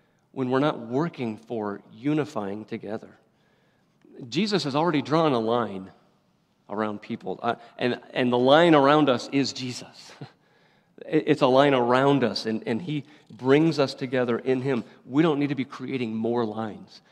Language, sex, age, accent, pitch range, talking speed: English, male, 40-59, American, 115-140 Hz, 155 wpm